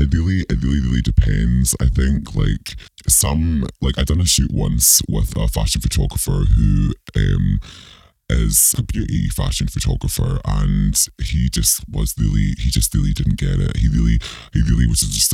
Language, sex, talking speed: English, female, 170 wpm